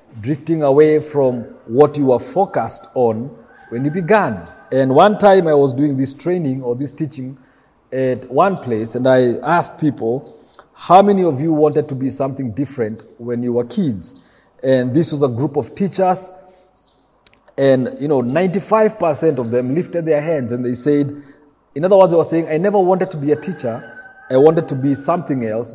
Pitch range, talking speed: 130-165 Hz, 185 wpm